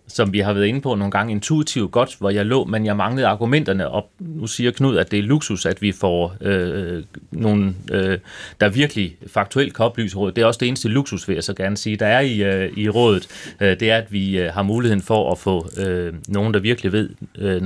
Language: Danish